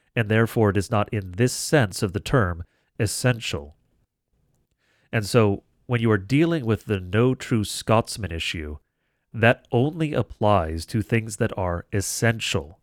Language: English